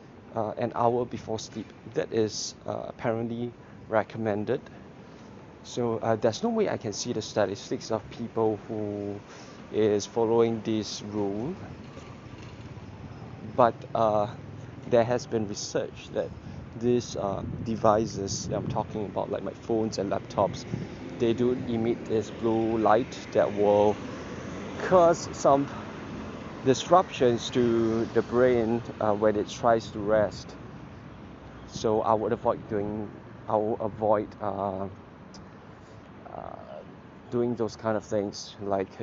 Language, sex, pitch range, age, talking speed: English, male, 105-120 Hz, 20-39, 125 wpm